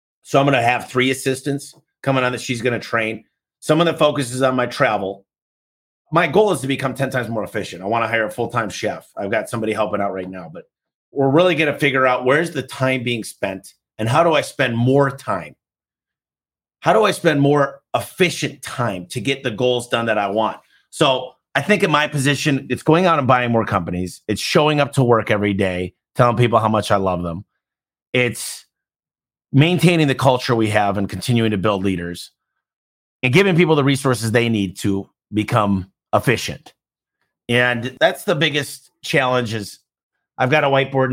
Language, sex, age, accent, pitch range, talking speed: English, male, 30-49, American, 105-135 Hz, 200 wpm